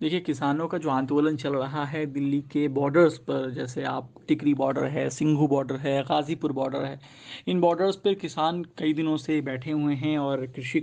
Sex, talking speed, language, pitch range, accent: male, 195 wpm, Hindi, 145-170 Hz, native